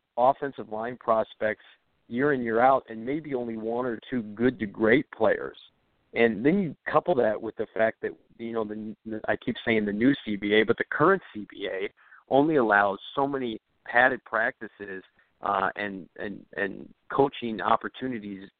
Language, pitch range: English, 100-125 Hz